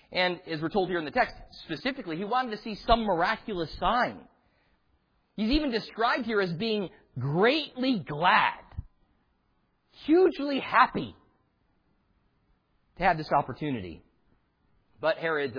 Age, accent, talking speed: 40-59, American, 125 wpm